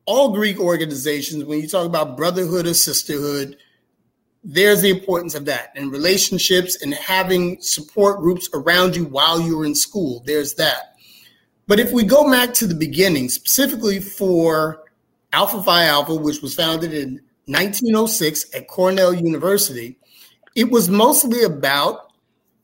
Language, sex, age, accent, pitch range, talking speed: English, male, 30-49, American, 160-215 Hz, 145 wpm